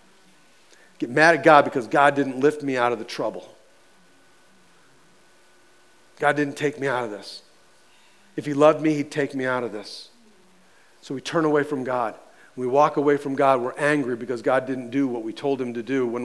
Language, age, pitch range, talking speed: English, 40-59, 130-155 Hz, 205 wpm